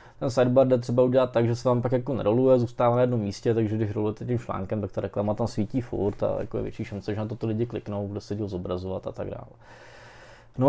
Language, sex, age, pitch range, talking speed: Czech, male, 20-39, 115-125 Hz, 245 wpm